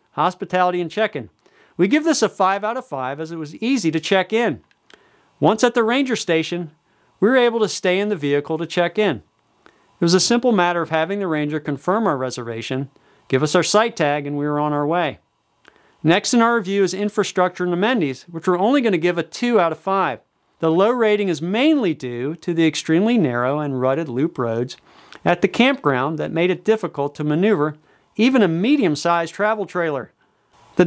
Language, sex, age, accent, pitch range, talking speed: English, male, 40-59, American, 150-210 Hz, 200 wpm